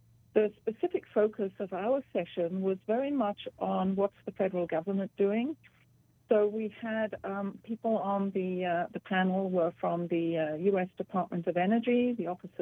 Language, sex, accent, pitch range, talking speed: English, female, British, 180-215 Hz, 165 wpm